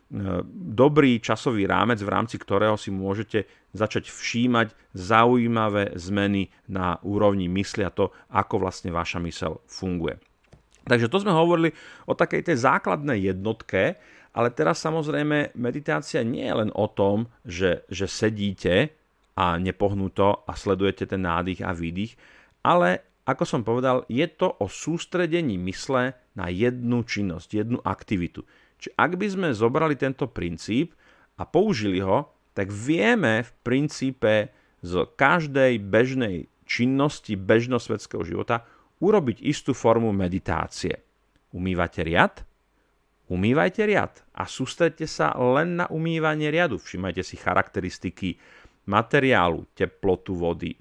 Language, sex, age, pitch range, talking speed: Slovak, male, 40-59, 95-135 Hz, 125 wpm